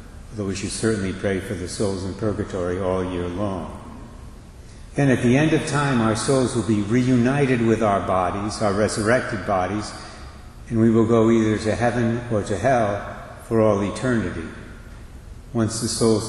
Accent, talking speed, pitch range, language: American, 170 wpm, 100-120 Hz, English